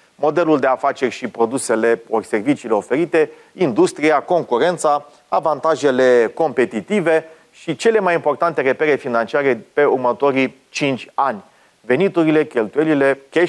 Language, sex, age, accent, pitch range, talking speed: Romanian, male, 30-49, native, 135-180 Hz, 105 wpm